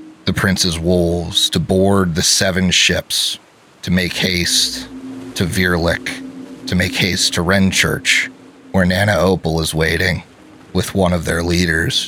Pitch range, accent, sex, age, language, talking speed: 85-95 Hz, American, male, 30-49, English, 140 wpm